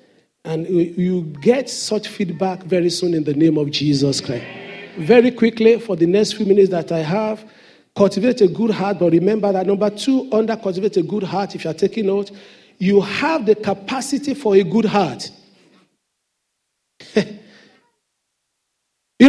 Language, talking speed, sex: English, 160 wpm, male